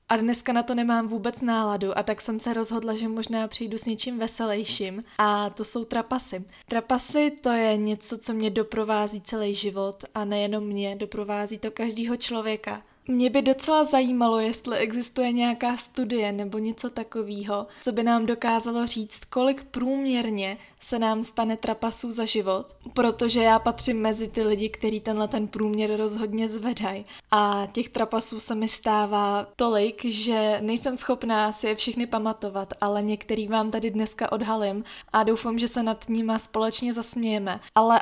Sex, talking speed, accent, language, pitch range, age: female, 165 wpm, native, Czech, 215-240 Hz, 20-39